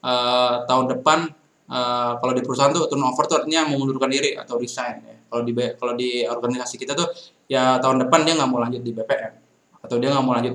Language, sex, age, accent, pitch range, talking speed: Indonesian, male, 20-39, native, 120-140 Hz, 210 wpm